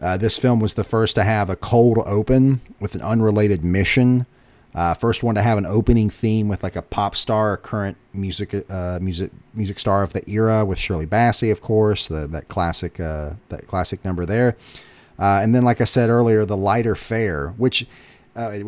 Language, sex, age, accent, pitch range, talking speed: English, male, 30-49, American, 95-120 Hz, 200 wpm